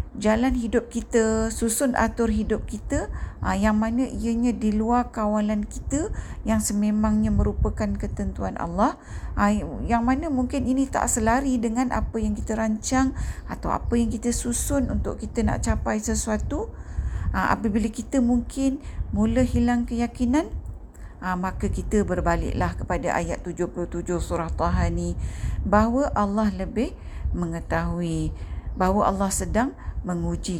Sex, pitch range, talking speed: female, 175-240 Hz, 130 wpm